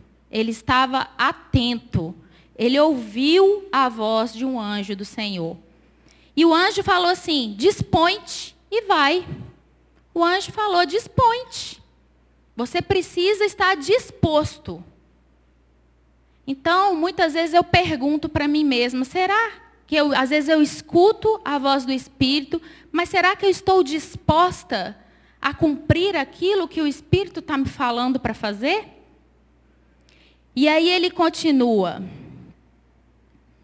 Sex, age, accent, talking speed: female, 10-29, Brazilian, 120 wpm